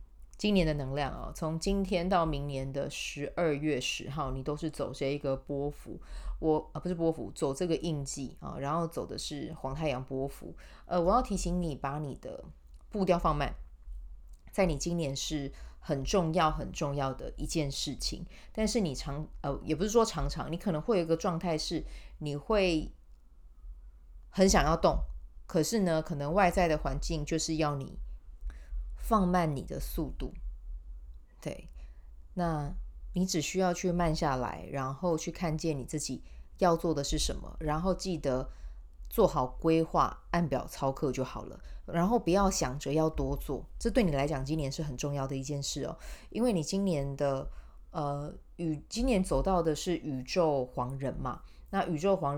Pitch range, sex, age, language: 135-170 Hz, female, 30-49, Chinese